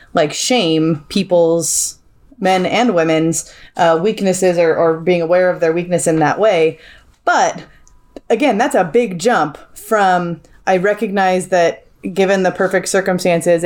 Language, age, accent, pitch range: English, 20-39, American, 170-205 Hz